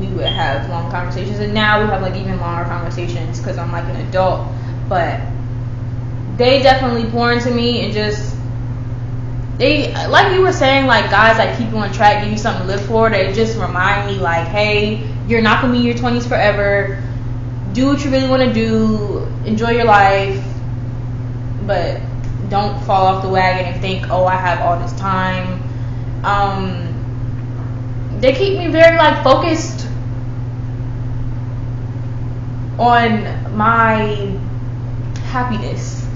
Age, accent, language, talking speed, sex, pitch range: 10-29, American, English, 155 wpm, female, 115-125 Hz